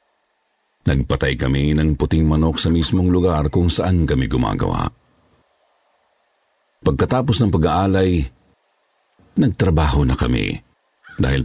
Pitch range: 80-100 Hz